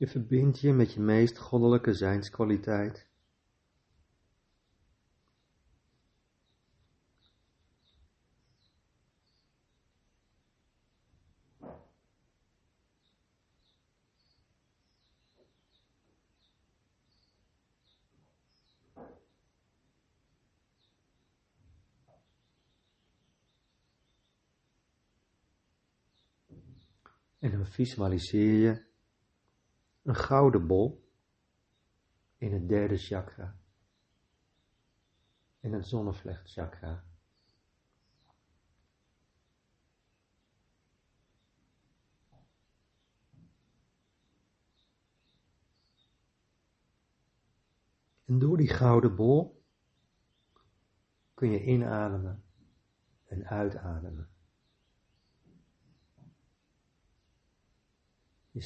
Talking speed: 35 wpm